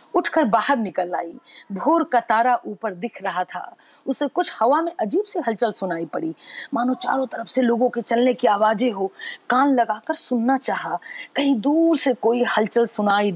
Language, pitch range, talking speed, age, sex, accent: Hindi, 200-280 Hz, 180 wpm, 50-69, female, native